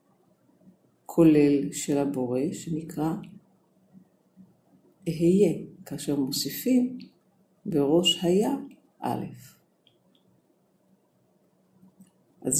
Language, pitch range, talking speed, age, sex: Hebrew, 165-200 Hz, 50 wpm, 50-69, female